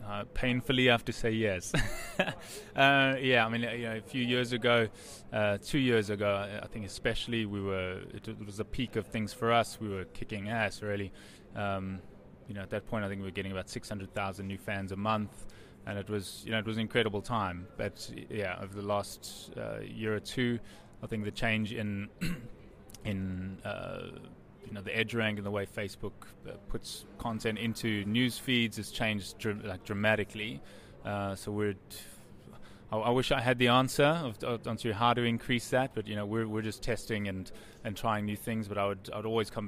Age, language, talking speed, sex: 20-39, English, 210 wpm, male